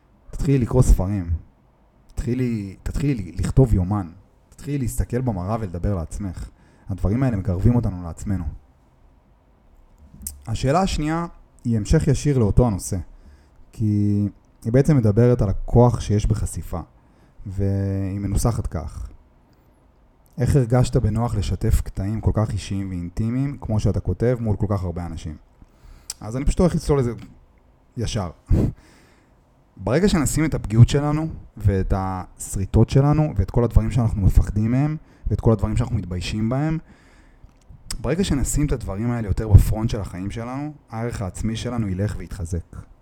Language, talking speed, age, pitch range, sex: Hebrew, 130 wpm, 30-49, 90-125 Hz, male